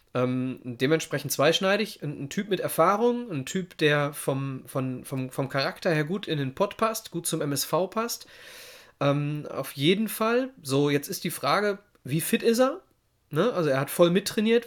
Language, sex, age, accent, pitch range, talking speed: German, male, 30-49, German, 140-180 Hz, 185 wpm